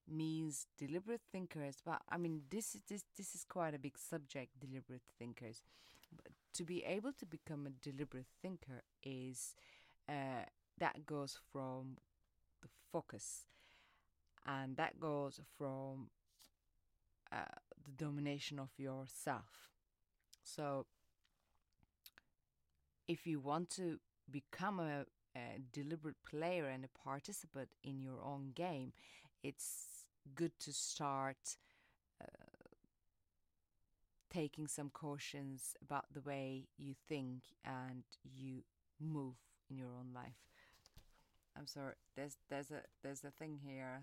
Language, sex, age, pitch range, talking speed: English, female, 30-49, 130-160 Hz, 120 wpm